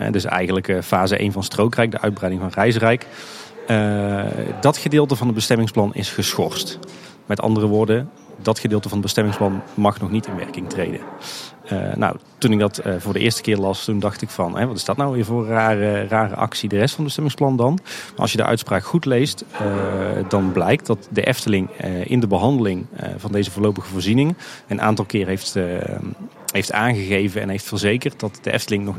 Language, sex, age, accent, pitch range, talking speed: Dutch, male, 30-49, Dutch, 100-120 Hz, 205 wpm